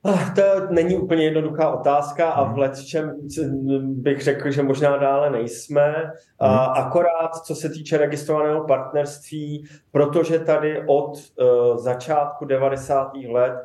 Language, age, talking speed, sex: Slovak, 20-39, 125 wpm, male